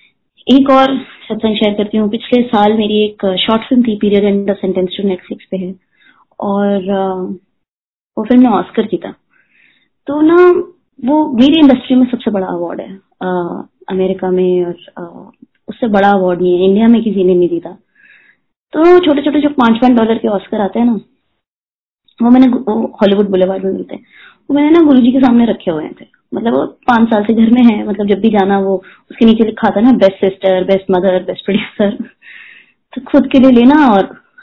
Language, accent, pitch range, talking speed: Hindi, native, 190-255 Hz, 140 wpm